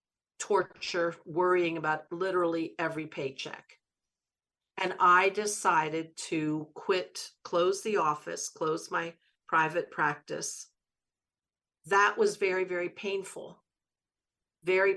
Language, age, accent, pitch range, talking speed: English, 50-69, American, 160-185 Hz, 95 wpm